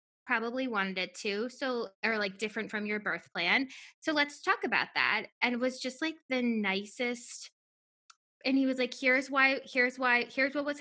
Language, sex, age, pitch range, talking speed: English, female, 10-29, 200-255 Hz, 195 wpm